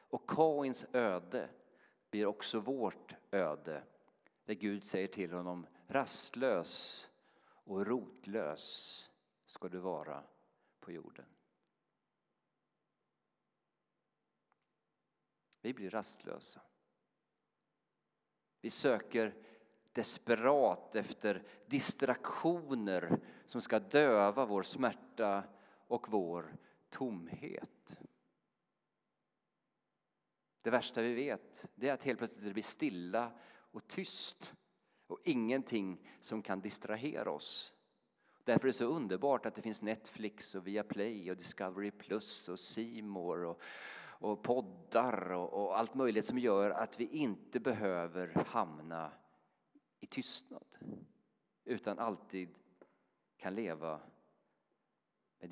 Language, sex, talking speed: Swedish, male, 100 wpm